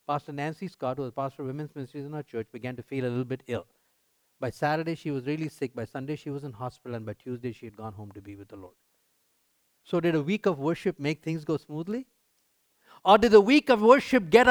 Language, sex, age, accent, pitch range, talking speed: English, male, 50-69, Indian, 140-215 Hz, 250 wpm